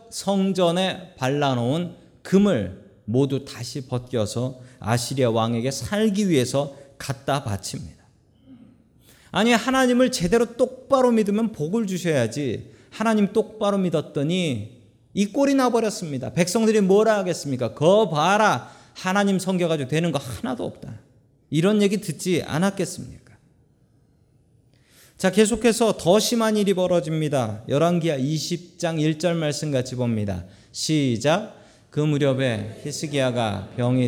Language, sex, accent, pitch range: Korean, male, native, 115-175 Hz